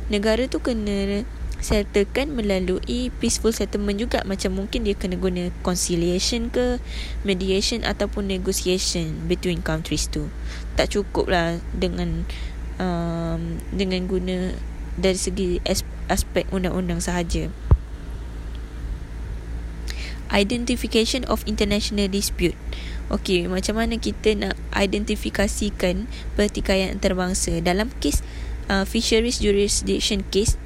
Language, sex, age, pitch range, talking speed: Malay, female, 20-39, 180-210 Hz, 100 wpm